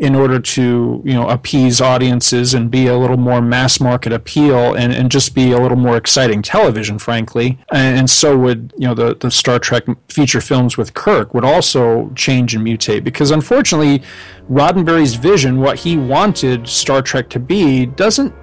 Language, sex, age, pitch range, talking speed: English, male, 40-59, 125-150 Hz, 180 wpm